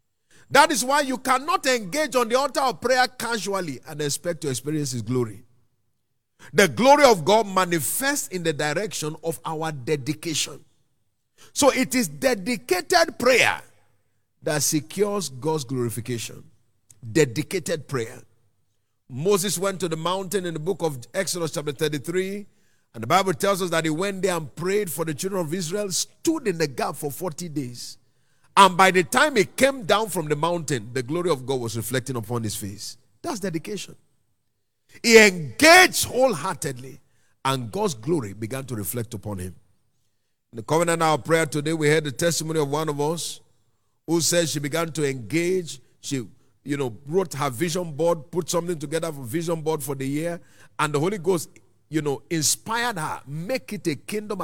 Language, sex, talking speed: English, male, 170 wpm